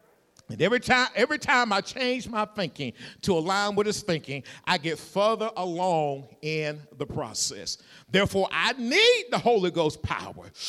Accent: American